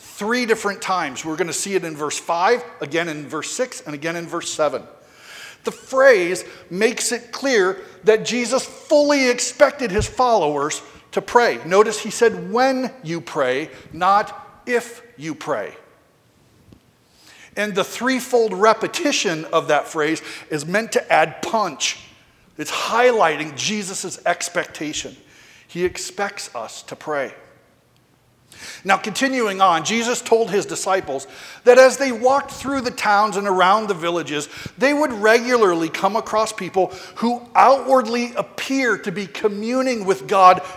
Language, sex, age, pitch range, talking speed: English, male, 50-69, 185-240 Hz, 140 wpm